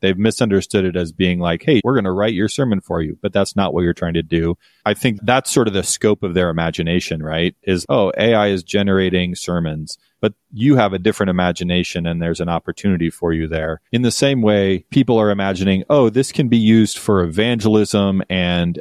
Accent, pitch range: American, 90-110 Hz